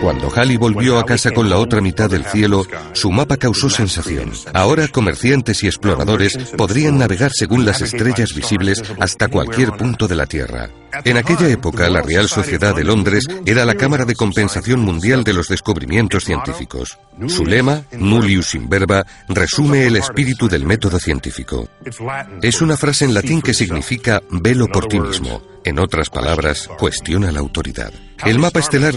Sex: male